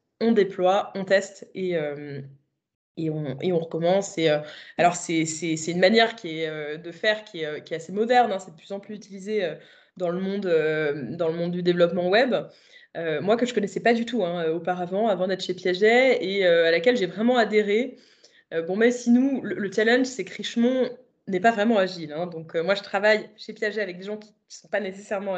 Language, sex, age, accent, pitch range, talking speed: French, female, 20-39, French, 170-220 Hz, 230 wpm